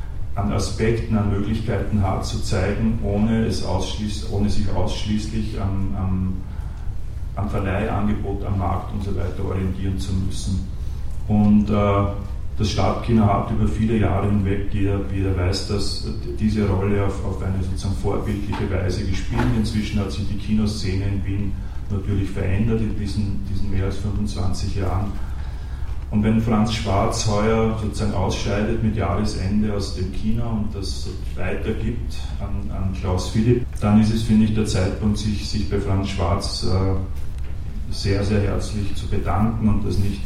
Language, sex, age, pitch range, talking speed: German, male, 40-59, 95-105 Hz, 150 wpm